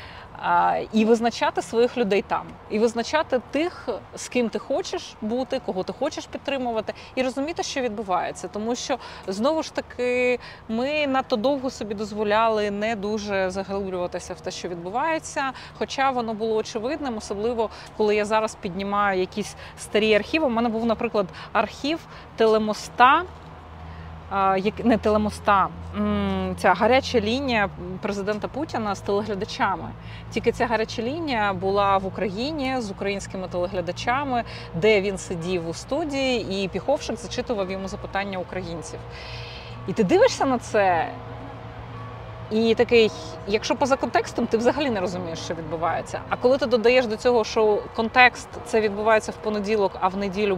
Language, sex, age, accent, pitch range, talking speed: Ukrainian, female, 20-39, native, 195-255 Hz, 140 wpm